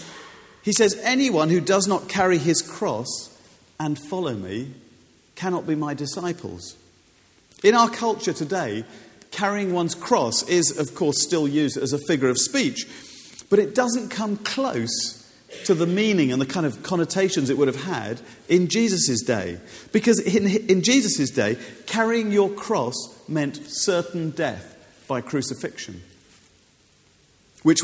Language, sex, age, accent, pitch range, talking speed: English, male, 40-59, British, 125-190 Hz, 145 wpm